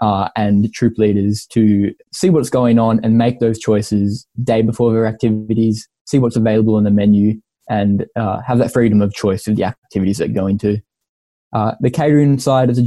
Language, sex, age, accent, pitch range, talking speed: English, male, 10-29, Australian, 105-120 Hz, 205 wpm